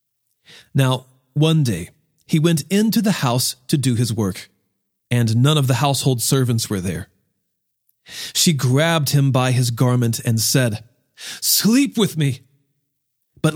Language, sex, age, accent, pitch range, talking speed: English, male, 40-59, American, 125-185 Hz, 140 wpm